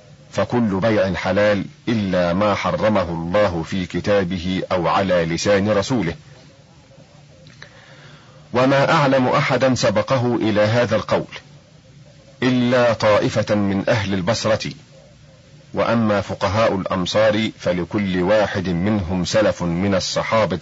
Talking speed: 100 wpm